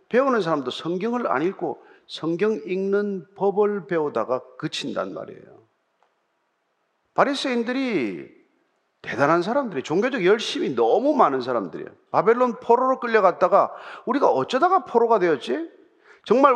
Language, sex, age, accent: Korean, male, 40-59, native